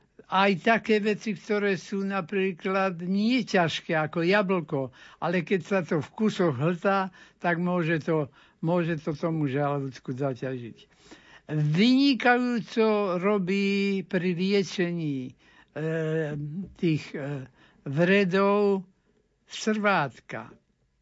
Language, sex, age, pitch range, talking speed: Slovak, male, 60-79, 160-200 Hz, 95 wpm